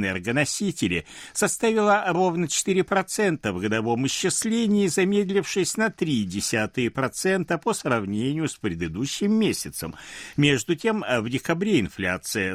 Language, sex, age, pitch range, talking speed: Russian, male, 60-79, 115-195 Hz, 95 wpm